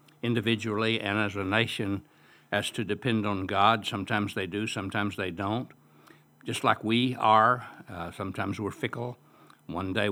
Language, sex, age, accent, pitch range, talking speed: English, male, 60-79, American, 100-115 Hz, 155 wpm